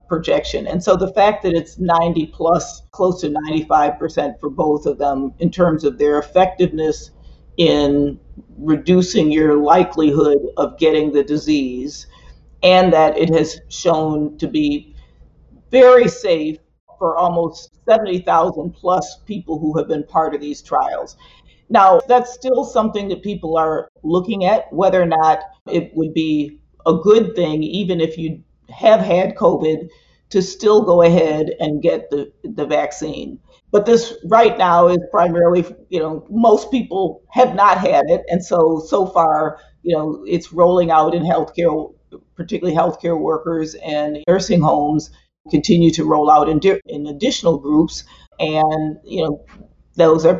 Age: 50-69